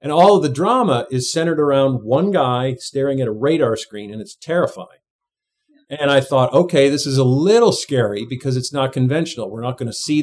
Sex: male